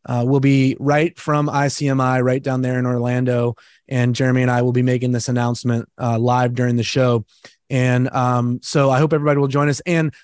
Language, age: English, 30-49